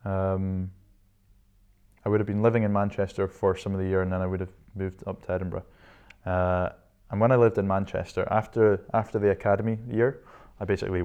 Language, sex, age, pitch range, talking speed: English, male, 20-39, 90-105 Hz, 195 wpm